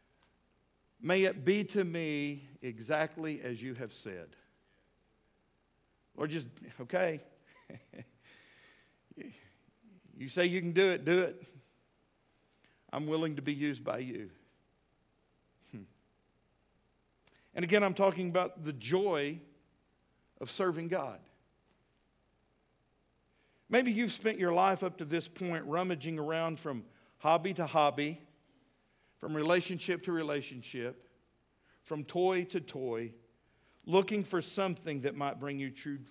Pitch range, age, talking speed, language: 140-185 Hz, 50-69, 115 wpm, English